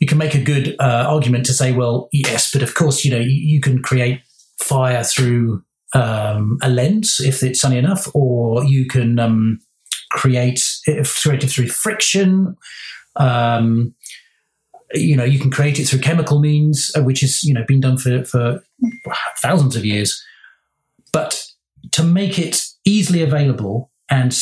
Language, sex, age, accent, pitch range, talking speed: English, male, 40-59, British, 120-145 Hz, 155 wpm